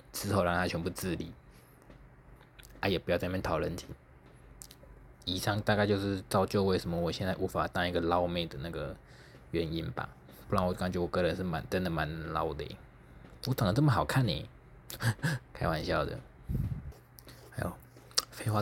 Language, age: Chinese, 20-39